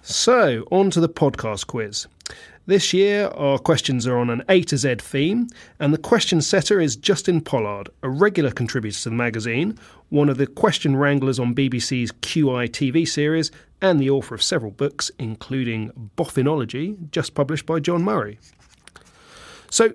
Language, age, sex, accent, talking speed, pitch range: English, 30-49, male, British, 160 wpm, 120-180 Hz